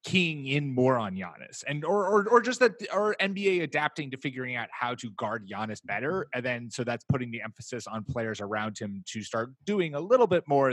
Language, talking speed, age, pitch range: English, 225 wpm, 20-39, 110-140 Hz